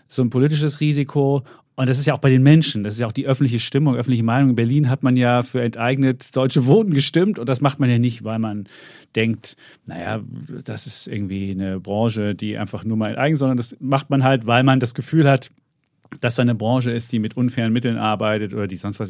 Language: German